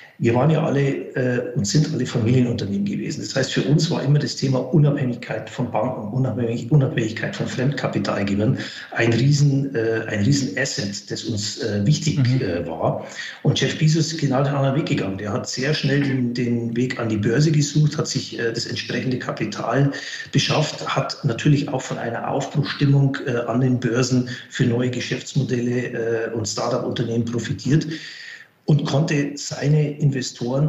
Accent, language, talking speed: German, German, 165 wpm